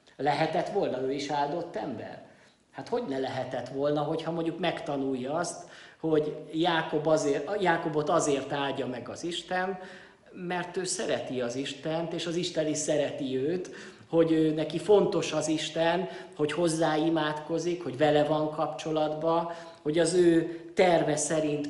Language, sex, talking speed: Hungarian, male, 145 wpm